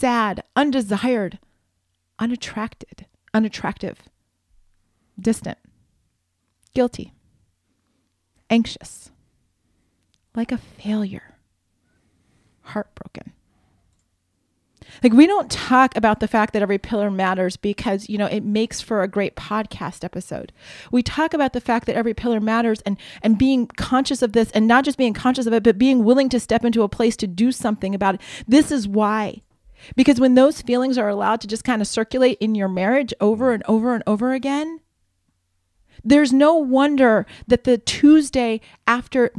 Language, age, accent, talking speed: English, 30-49, American, 150 wpm